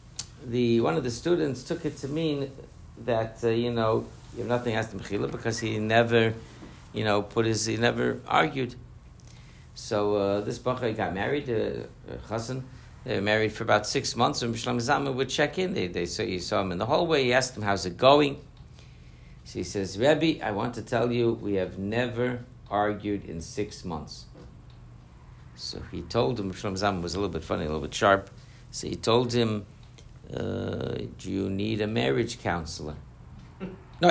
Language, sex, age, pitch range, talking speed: English, male, 60-79, 95-125 Hz, 190 wpm